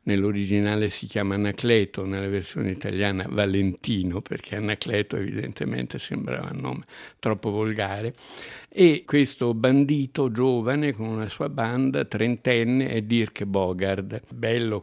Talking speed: 115 wpm